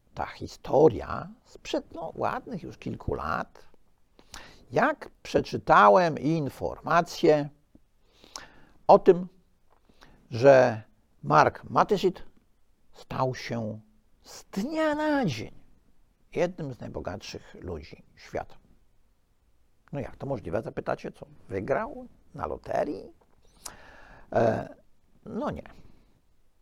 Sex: male